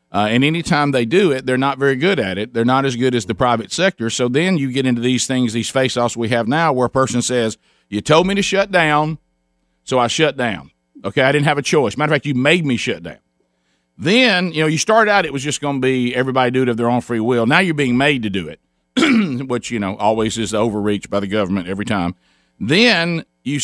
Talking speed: 260 wpm